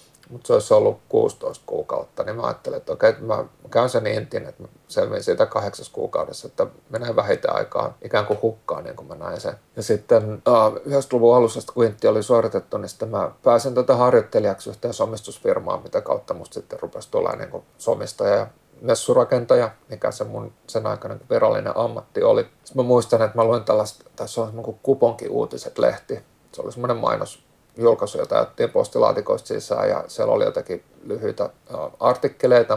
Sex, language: male, Finnish